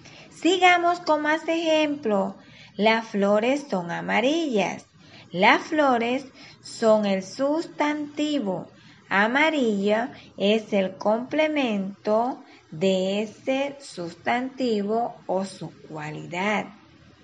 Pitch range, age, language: 195-280 Hz, 20-39, Spanish